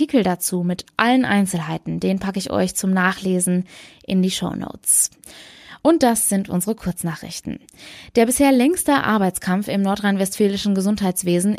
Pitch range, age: 185-240 Hz, 20-39